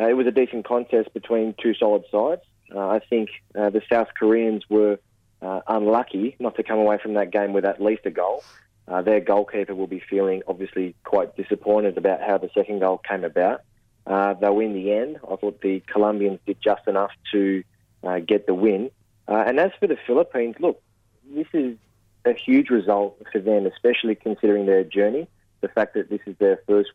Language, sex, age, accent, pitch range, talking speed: English, male, 20-39, Australian, 100-110 Hz, 200 wpm